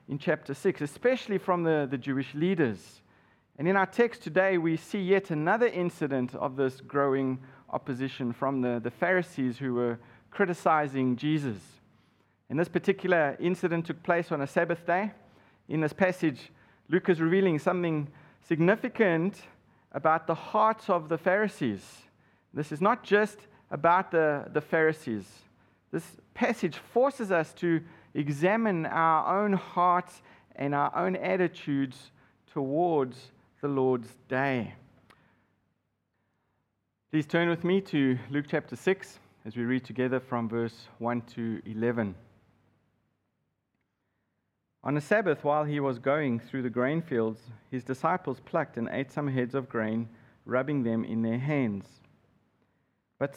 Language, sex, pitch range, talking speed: English, male, 125-175 Hz, 140 wpm